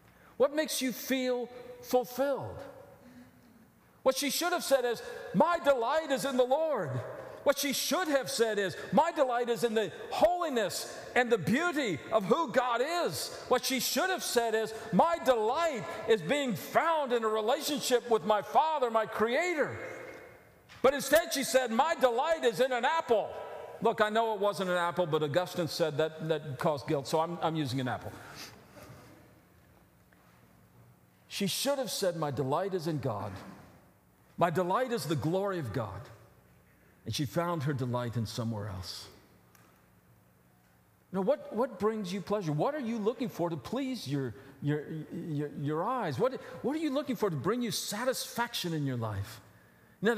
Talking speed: 165 wpm